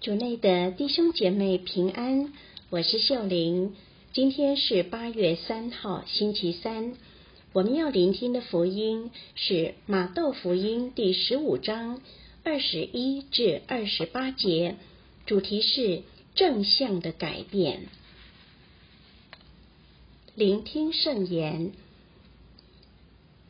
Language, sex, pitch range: Chinese, female, 190-275 Hz